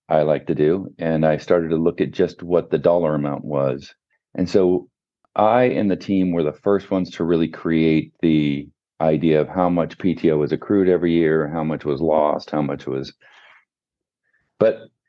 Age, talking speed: 40-59, 185 wpm